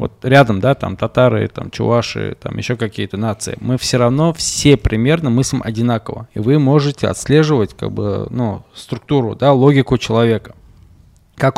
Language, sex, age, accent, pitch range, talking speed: Russian, male, 20-39, native, 115-145 Hz, 155 wpm